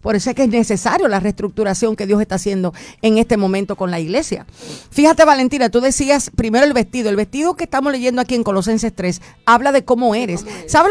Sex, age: female, 50-69